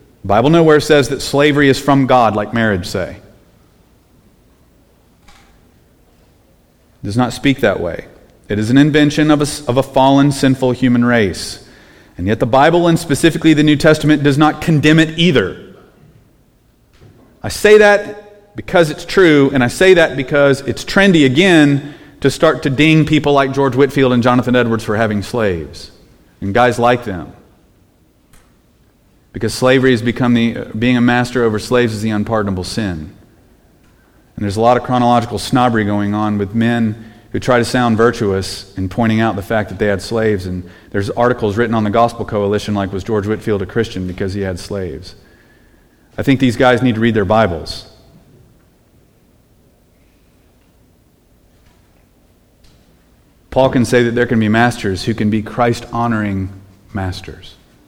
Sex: male